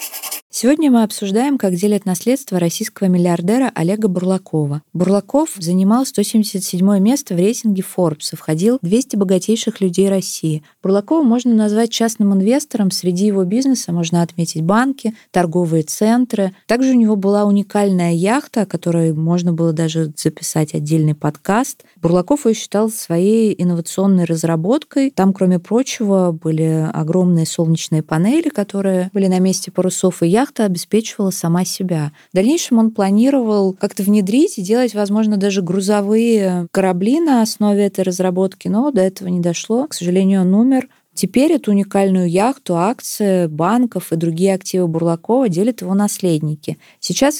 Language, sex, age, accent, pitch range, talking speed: Russian, female, 20-39, native, 175-220 Hz, 140 wpm